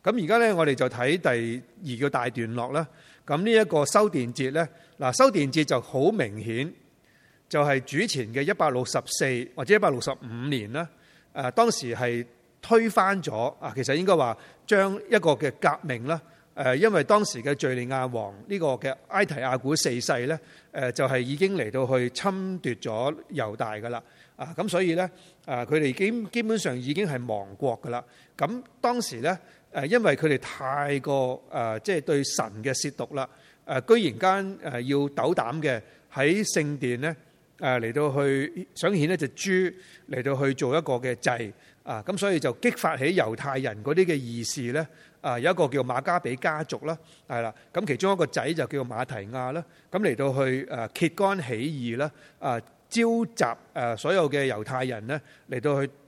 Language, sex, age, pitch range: Chinese, male, 30-49, 130-175 Hz